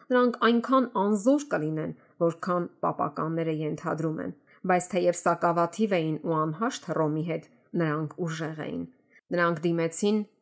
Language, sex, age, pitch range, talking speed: English, female, 30-49, 155-210 Hz, 120 wpm